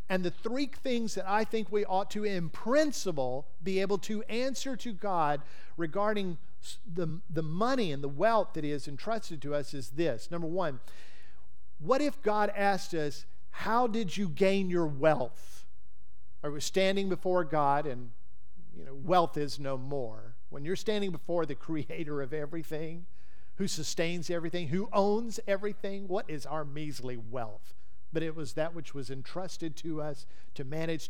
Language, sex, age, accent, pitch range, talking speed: English, male, 50-69, American, 140-195 Hz, 170 wpm